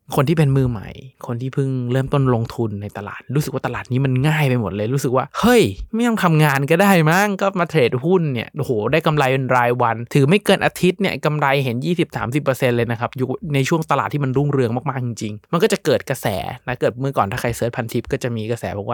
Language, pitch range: Thai, 120-150 Hz